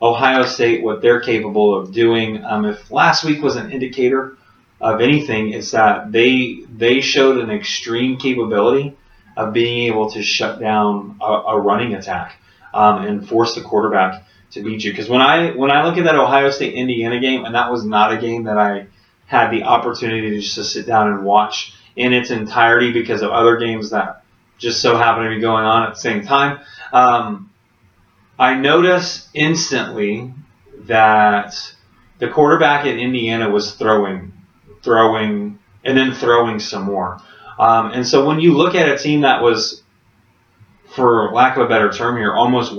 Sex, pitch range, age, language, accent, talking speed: male, 105-130 Hz, 30-49, English, American, 175 wpm